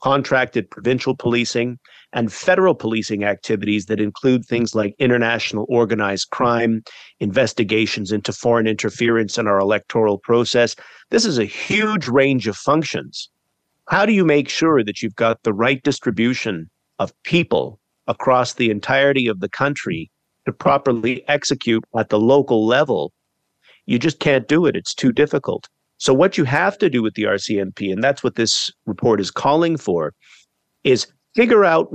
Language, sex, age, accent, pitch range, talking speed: English, male, 50-69, American, 110-140 Hz, 155 wpm